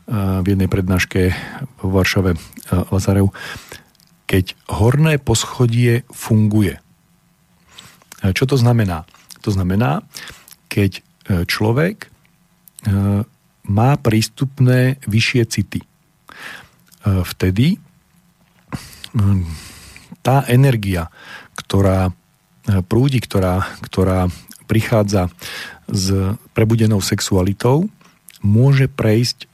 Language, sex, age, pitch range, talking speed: Slovak, male, 40-59, 100-130 Hz, 70 wpm